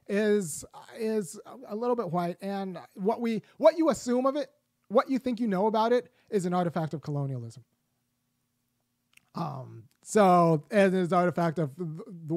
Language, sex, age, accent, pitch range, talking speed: English, male, 30-49, American, 155-210 Hz, 165 wpm